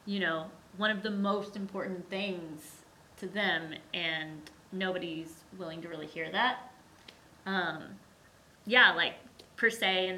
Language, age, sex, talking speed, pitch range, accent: English, 20-39, female, 135 wpm, 175-215 Hz, American